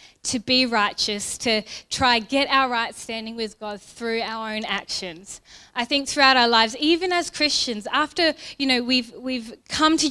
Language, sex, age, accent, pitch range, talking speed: English, female, 10-29, Australian, 220-260 Hz, 180 wpm